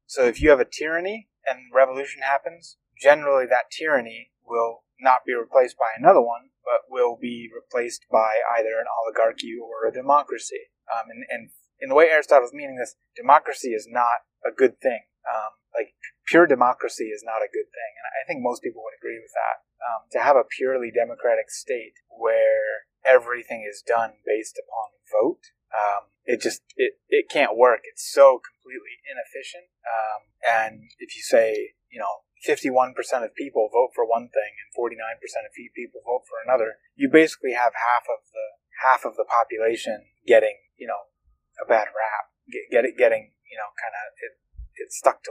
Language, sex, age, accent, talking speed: English, male, 30-49, American, 175 wpm